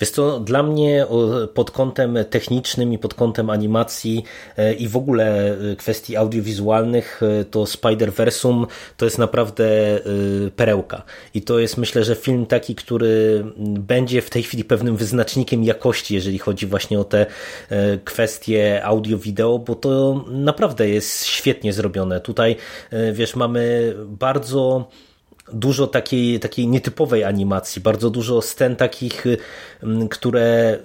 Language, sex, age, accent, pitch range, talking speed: Polish, male, 30-49, native, 110-125 Hz, 130 wpm